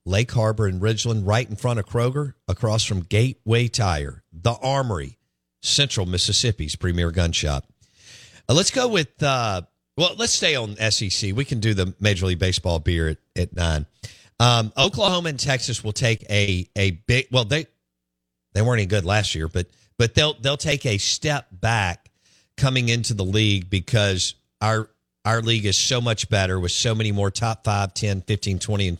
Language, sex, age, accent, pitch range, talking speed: English, male, 50-69, American, 90-115 Hz, 180 wpm